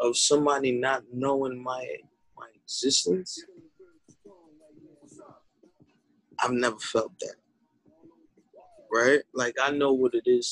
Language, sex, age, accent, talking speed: English, male, 20-39, American, 105 wpm